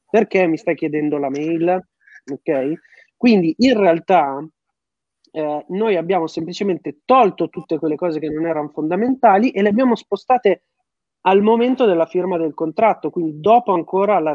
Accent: native